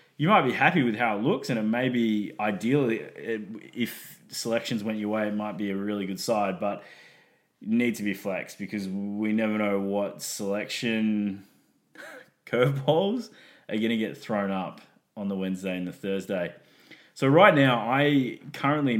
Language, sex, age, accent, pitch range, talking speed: English, male, 20-39, Australian, 100-115 Hz, 175 wpm